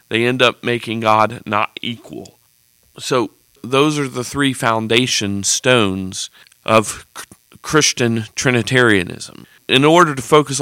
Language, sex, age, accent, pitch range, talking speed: English, male, 40-59, American, 115-140 Hz, 120 wpm